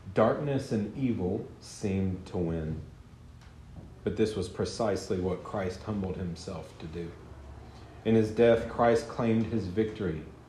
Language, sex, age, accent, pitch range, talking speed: English, male, 40-59, American, 90-115 Hz, 130 wpm